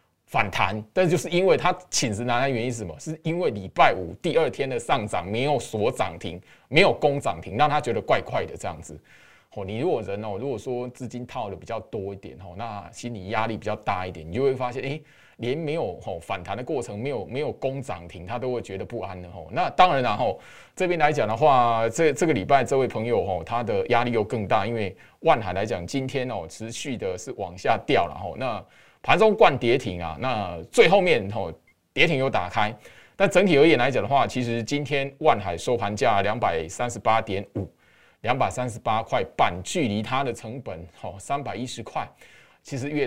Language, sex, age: Chinese, male, 20-39